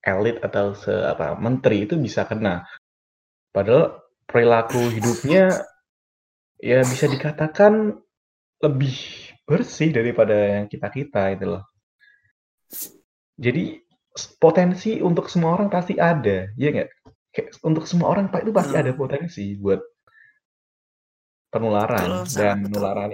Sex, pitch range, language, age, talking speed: male, 105-160 Hz, Indonesian, 20-39, 110 wpm